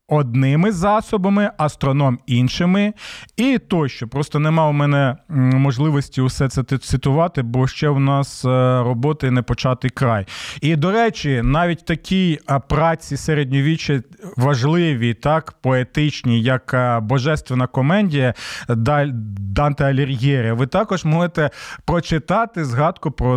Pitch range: 130-165 Hz